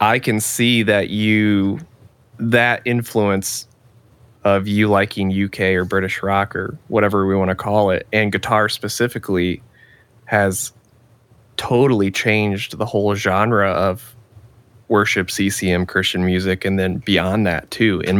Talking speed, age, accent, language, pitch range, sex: 135 wpm, 20-39, American, English, 95-115 Hz, male